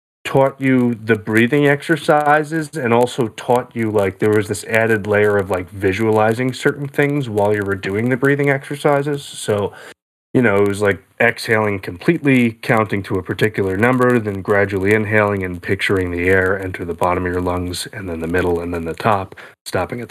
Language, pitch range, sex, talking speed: English, 100-140 Hz, male, 190 wpm